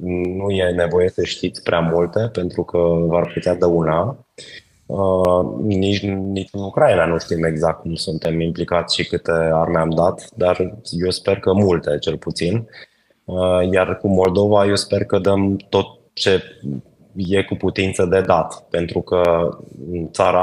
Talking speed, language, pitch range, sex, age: 160 wpm, Romanian, 90-105 Hz, male, 20-39